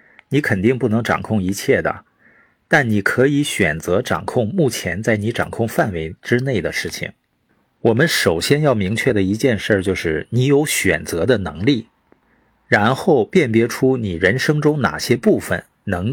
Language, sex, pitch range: Chinese, male, 105-135 Hz